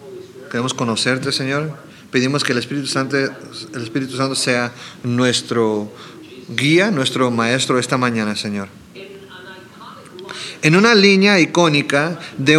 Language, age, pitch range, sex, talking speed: English, 40-59, 140-190 Hz, male, 105 wpm